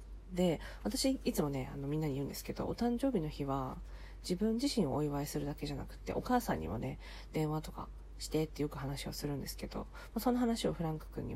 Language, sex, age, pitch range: Japanese, female, 40-59, 135-200 Hz